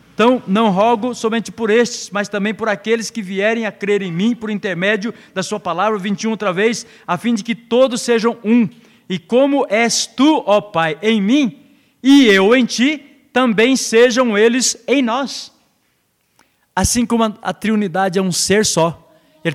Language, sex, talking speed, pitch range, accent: Portuguese, male, 175 wpm, 160-225 Hz, Brazilian